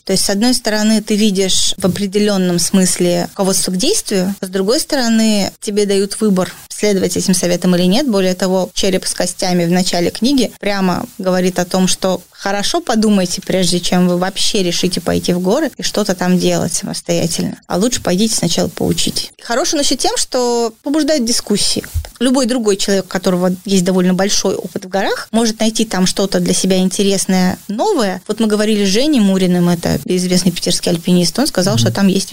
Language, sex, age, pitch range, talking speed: Russian, female, 20-39, 185-225 Hz, 180 wpm